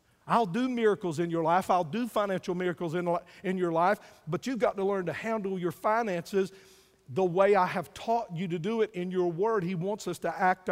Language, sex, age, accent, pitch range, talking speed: English, male, 50-69, American, 185-245 Hz, 225 wpm